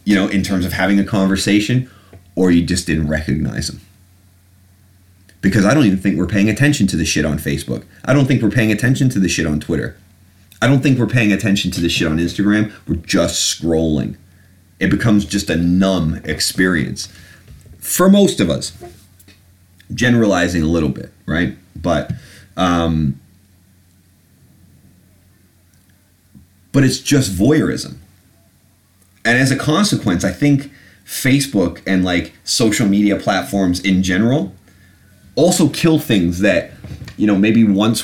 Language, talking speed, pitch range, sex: English, 150 wpm, 90-110 Hz, male